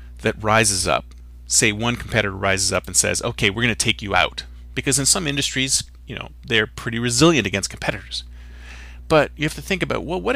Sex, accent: male, American